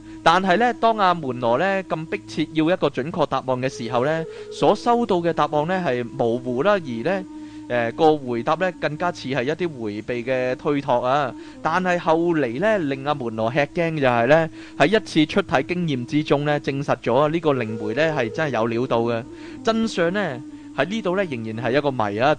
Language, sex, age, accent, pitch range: Chinese, male, 20-39, native, 120-170 Hz